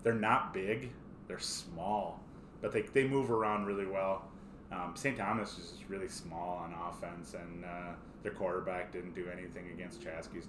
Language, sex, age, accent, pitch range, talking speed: English, male, 30-49, American, 95-110 Hz, 170 wpm